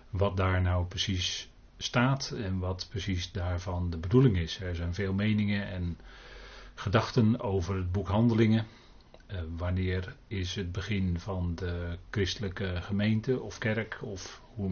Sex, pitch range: male, 90-105 Hz